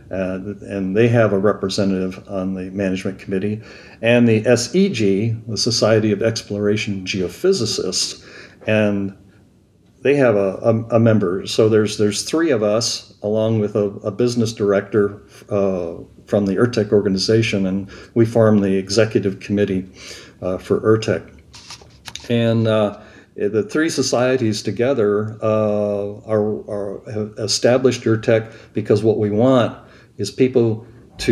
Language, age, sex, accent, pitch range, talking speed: English, 60-79, male, American, 100-120 Hz, 135 wpm